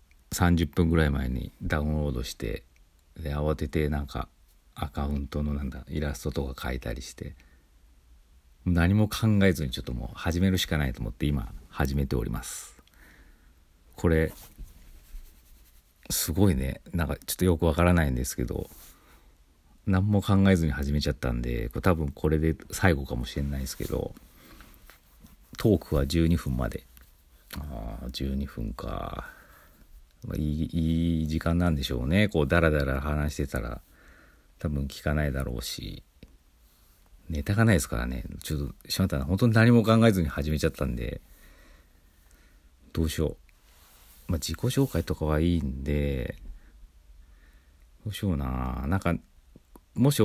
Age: 40-59